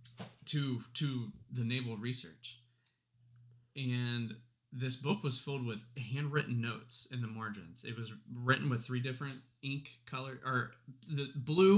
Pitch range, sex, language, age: 115-135 Hz, male, English, 20-39